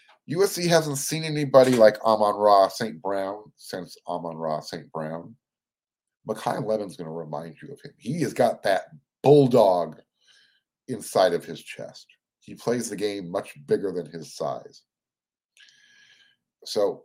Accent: American